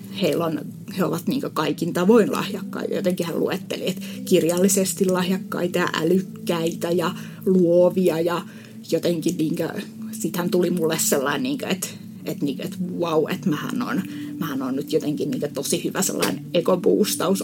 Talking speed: 140 wpm